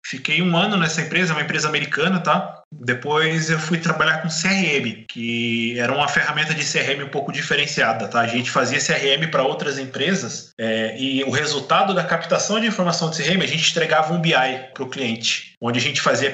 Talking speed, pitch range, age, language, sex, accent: 200 wpm, 135-170 Hz, 20-39, Portuguese, male, Brazilian